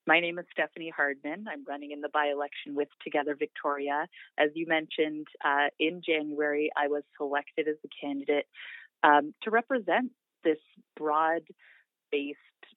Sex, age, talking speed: female, 30-49, 140 wpm